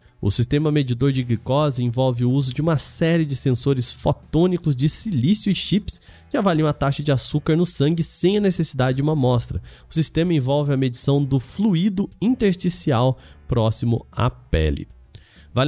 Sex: male